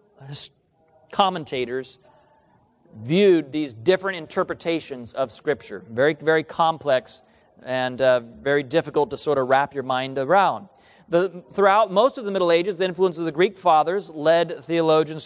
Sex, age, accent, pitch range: male, 40-59, American, 150-190 Hz